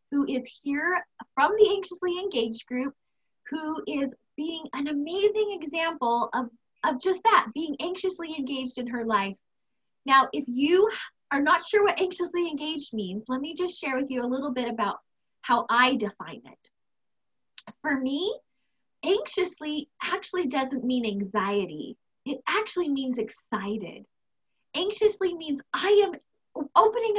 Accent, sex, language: American, female, English